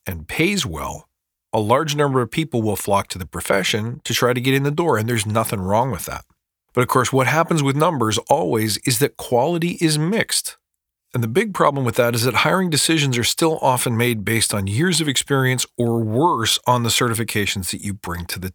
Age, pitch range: 40-59, 105-140 Hz